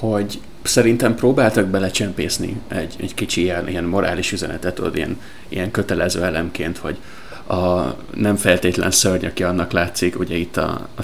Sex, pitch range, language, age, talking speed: male, 90-105 Hz, Hungarian, 30-49, 140 wpm